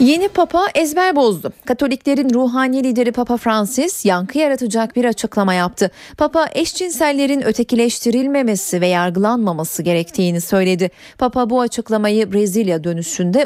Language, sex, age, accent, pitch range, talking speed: Turkish, female, 30-49, native, 185-255 Hz, 115 wpm